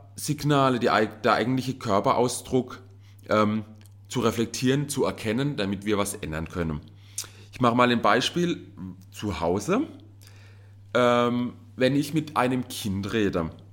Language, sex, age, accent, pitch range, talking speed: German, male, 30-49, German, 95-120 Hz, 120 wpm